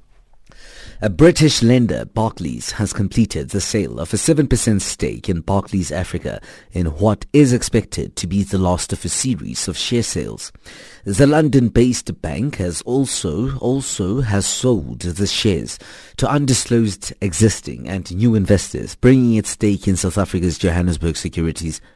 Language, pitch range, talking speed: English, 90-115 Hz, 145 wpm